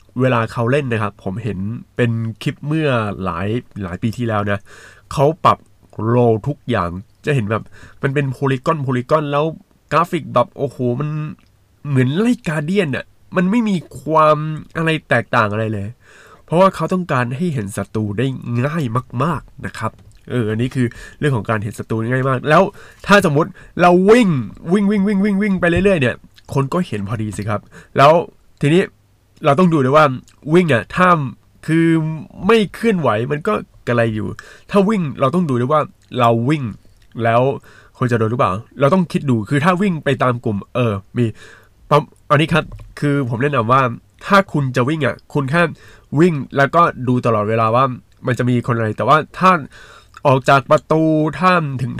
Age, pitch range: 20-39, 115-155 Hz